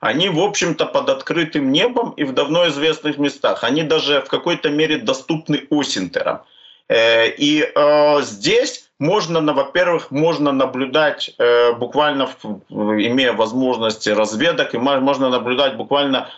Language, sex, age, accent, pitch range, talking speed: Ukrainian, male, 50-69, native, 135-170 Hz, 115 wpm